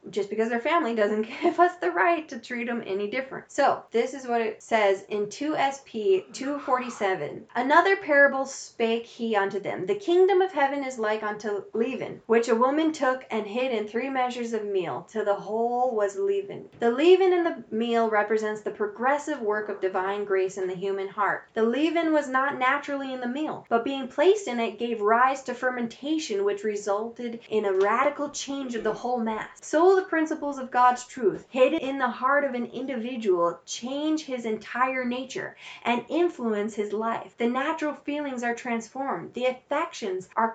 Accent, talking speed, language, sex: American, 185 wpm, English, female